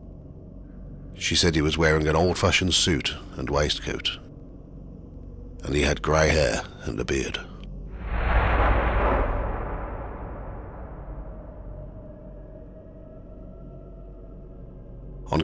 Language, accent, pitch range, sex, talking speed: English, British, 80-95 Hz, male, 75 wpm